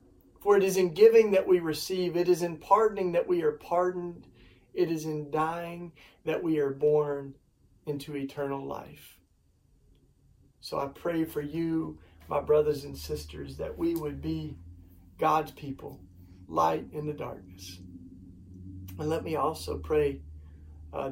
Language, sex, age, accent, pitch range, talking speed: English, male, 40-59, American, 95-155 Hz, 150 wpm